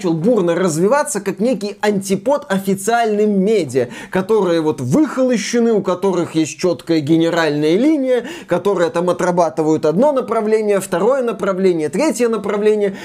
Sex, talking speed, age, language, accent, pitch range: male, 120 wpm, 20-39, Russian, native, 185-260 Hz